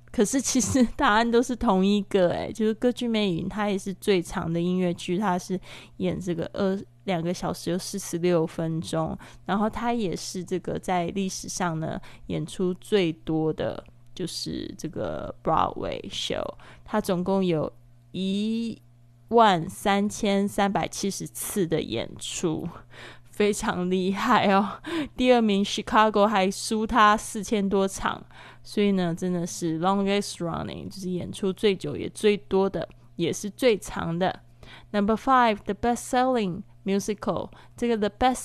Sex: female